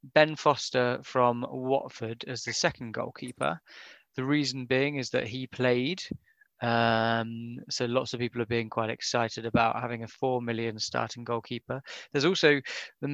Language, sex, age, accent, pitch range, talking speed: English, male, 20-39, British, 115-135 Hz, 155 wpm